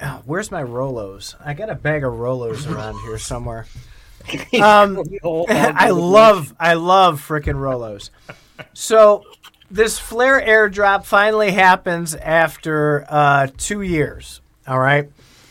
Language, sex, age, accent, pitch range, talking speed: English, male, 30-49, American, 140-190 Hz, 120 wpm